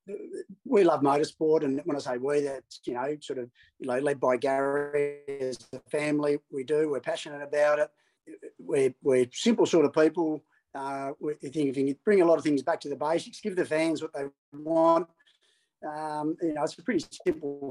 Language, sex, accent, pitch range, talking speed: English, male, Australian, 135-165 Hz, 205 wpm